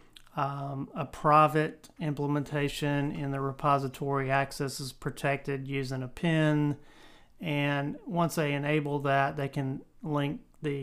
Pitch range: 135-150 Hz